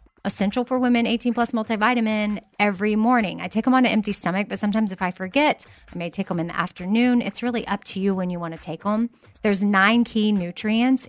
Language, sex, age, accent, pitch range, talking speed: English, female, 30-49, American, 185-235 Hz, 225 wpm